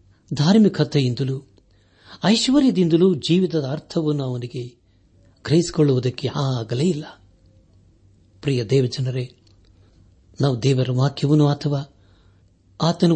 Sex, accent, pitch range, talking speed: male, native, 95-150 Hz, 70 wpm